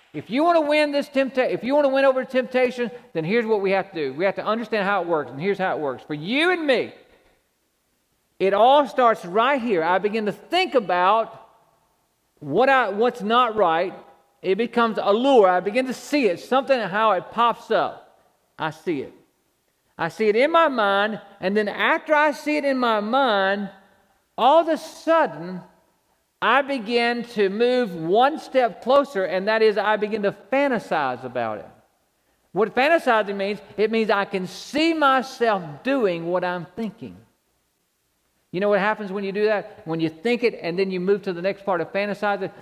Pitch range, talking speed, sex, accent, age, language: 190-250 Hz, 195 wpm, male, American, 50-69, English